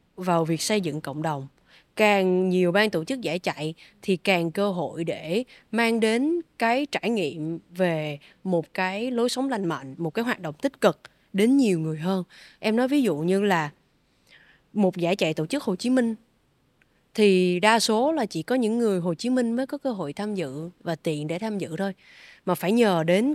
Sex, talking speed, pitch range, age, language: female, 210 wpm, 170-225 Hz, 20-39, Vietnamese